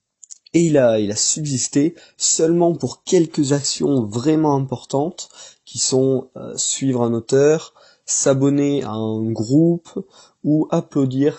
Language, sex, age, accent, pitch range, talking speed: French, male, 20-39, French, 115-150 Hz, 125 wpm